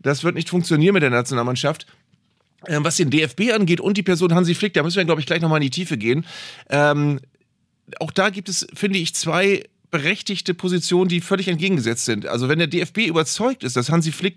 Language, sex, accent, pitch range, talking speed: German, male, German, 150-180 Hz, 215 wpm